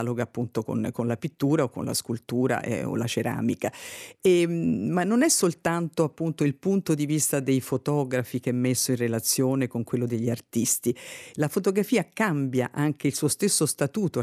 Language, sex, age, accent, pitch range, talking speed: Italian, female, 50-69, native, 125-165 Hz, 175 wpm